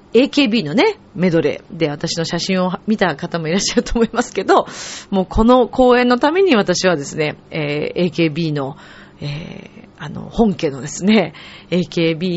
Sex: female